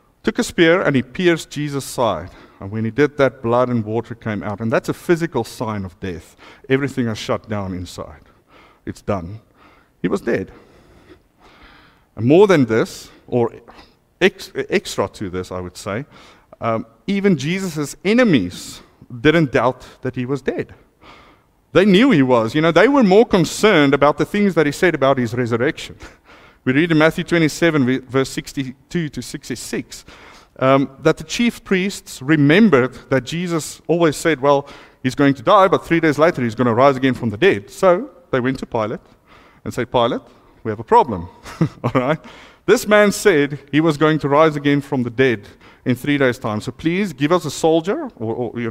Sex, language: male, English